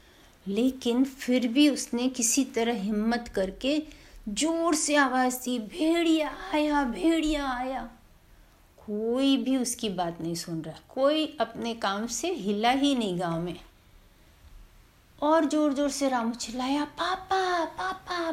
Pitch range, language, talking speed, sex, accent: 195-285 Hz, Hindi, 130 wpm, female, native